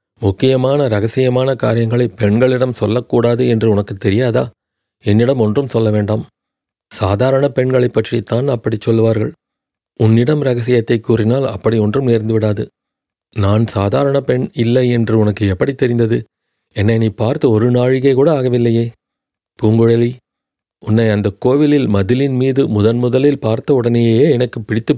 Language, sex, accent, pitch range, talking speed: Tamil, male, native, 110-130 Hz, 125 wpm